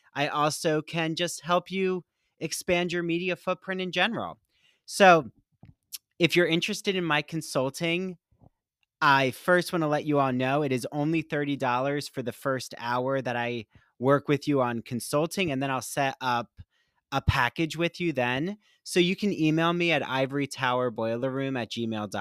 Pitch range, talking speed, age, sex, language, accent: 125-170 Hz, 160 wpm, 30-49, male, English, American